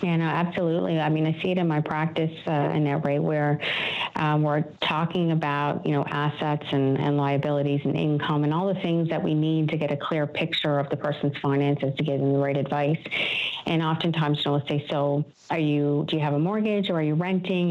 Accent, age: American, 50-69